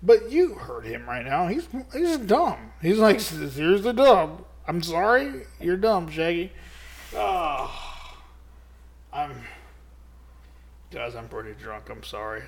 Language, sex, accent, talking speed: English, male, American, 130 wpm